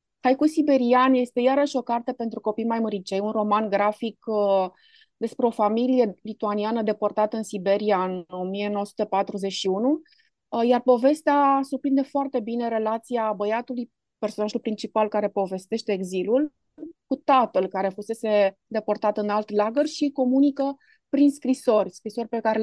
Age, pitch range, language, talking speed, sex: 20-39, 210-255 Hz, Romanian, 135 wpm, female